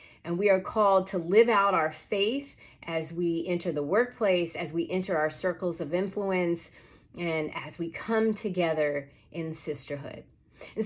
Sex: female